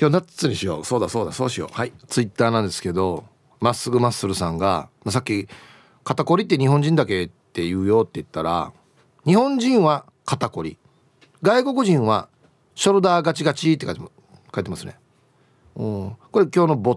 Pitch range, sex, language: 120-185 Hz, male, Japanese